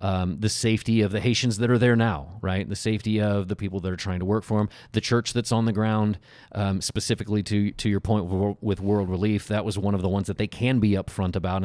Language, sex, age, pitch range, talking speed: English, male, 30-49, 95-115 Hz, 260 wpm